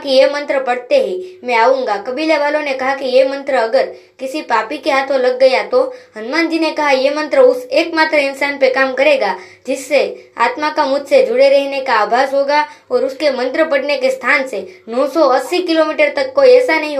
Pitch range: 255-310 Hz